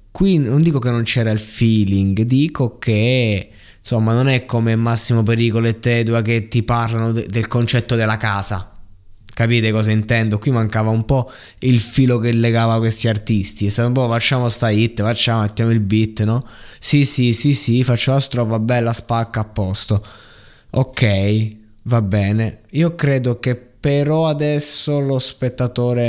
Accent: native